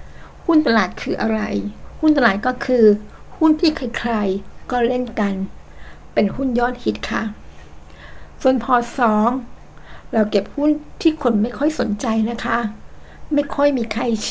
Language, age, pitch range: Thai, 60-79, 210-255 Hz